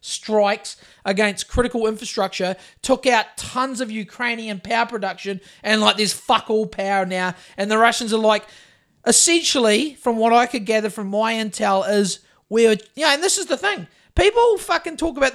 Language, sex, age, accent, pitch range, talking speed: English, male, 30-49, Australian, 185-240 Hz, 170 wpm